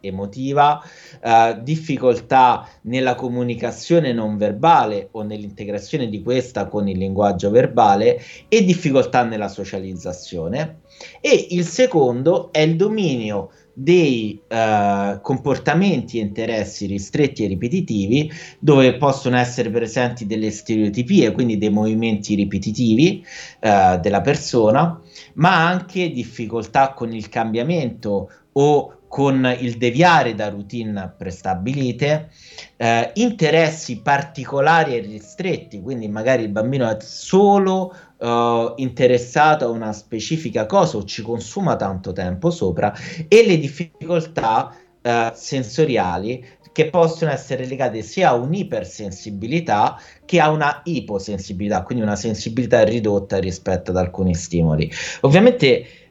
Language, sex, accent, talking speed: Italian, male, native, 115 wpm